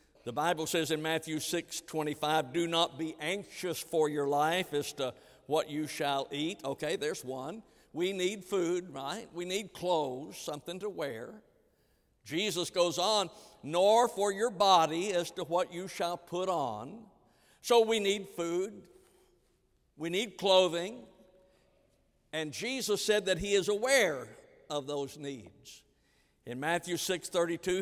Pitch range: 155-190 Hz